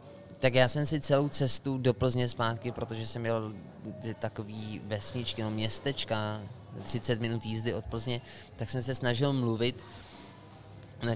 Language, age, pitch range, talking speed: Czech, 20-39, 110-135 Hz, 145 wpm